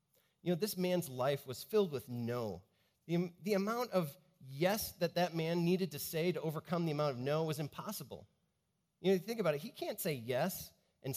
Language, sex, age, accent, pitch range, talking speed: English, male, 30-49, American, 115-170 Hz, 205 wpm